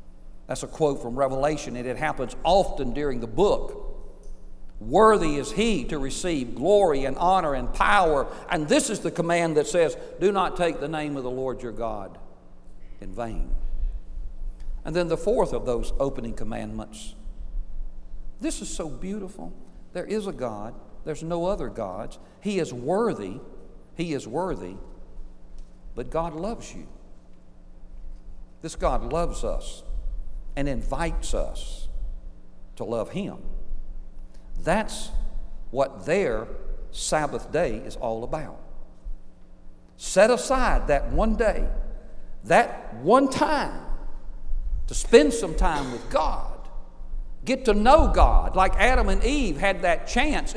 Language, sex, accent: English, male, American